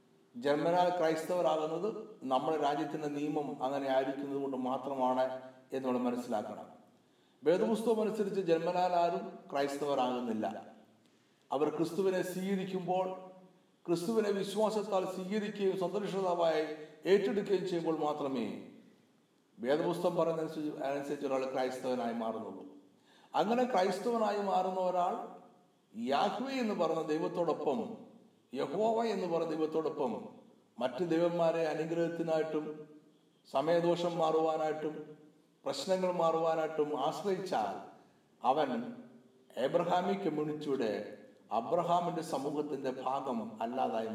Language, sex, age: Malayalam, male, 60-79